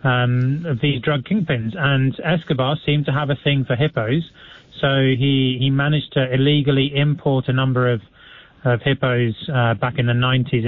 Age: 30-49